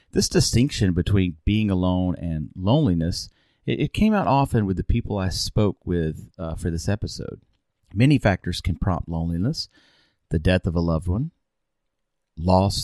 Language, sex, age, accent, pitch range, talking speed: English, male, 40-59, American, 90-110 Hz, 160 wpm